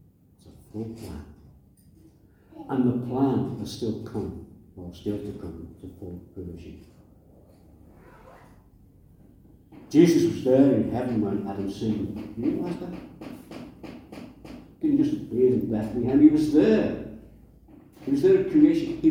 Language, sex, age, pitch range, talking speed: English, male, 60-79, 95-130 Hz, 130 wpm